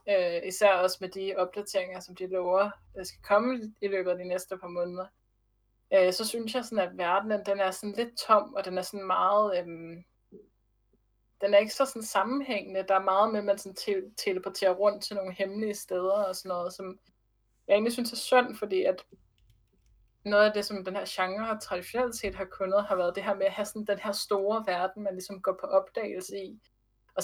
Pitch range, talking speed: 185-210 Hz, 205 wpm